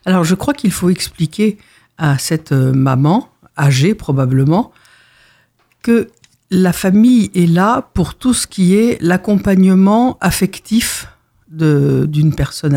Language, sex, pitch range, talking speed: French, female, 150-200 Hz, 120 wpm